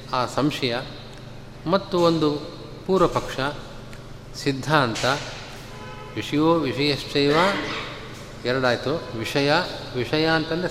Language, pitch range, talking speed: Kannada, 125-160 Hz, 65 wpm